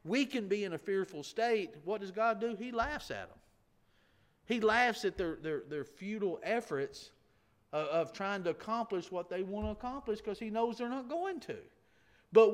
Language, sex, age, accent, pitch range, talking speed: English, male, 50-69, American, 190-240 Hz, 190 wpm